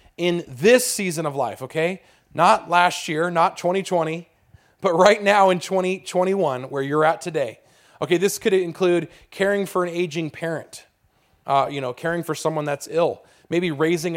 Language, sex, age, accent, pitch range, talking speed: English, male, 30-49, American, 145-185 Hz, 165 wpm